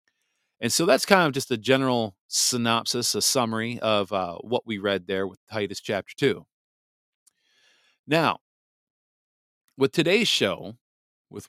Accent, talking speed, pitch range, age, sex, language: American, 135 wpm, 100-125 Hz, 40-59, male, English